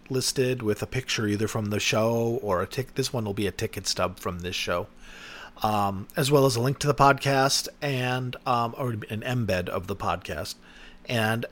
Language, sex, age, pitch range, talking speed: English, male, 40-59, 105-140 Hz, 205 wpm